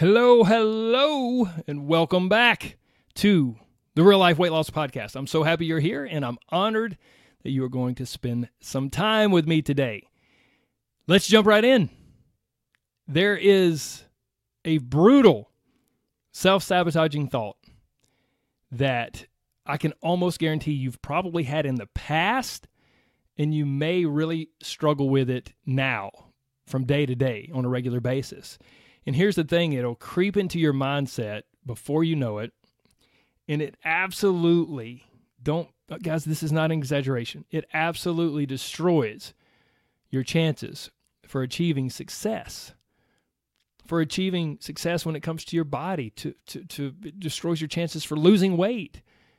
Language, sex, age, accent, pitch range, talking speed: English, male, 30-49, American, 135-175 Hz, 145 wpm